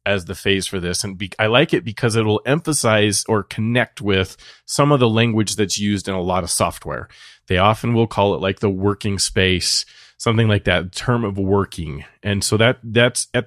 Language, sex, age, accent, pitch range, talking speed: English, male, 30-49, American, 95-120 Hz, 215 wpm